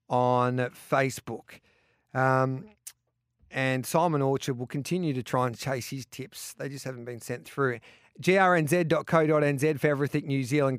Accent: Australian